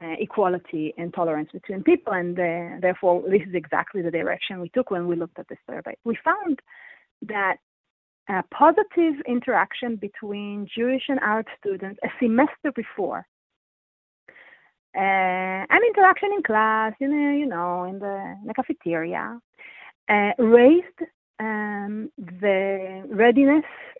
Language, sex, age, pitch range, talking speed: English, female, 30-49, 190-275 Hz, 140 wpm